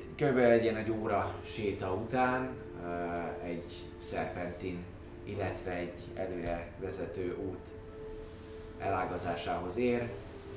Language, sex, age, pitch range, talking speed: Hungarian, male, 30-49, 80-90 Hz, 95 wpm